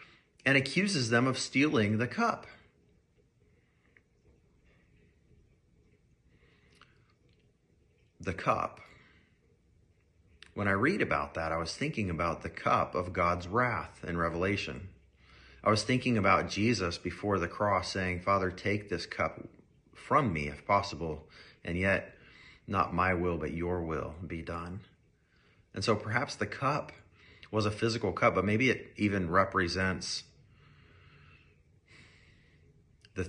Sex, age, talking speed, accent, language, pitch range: male, 40-59, 120 wpm, American, English, 85-110 Hz